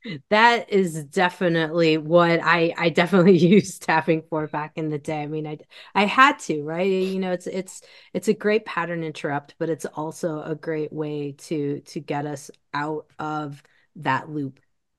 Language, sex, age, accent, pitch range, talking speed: English, female, 30-49, American, 155-215 Hz, 175 wpm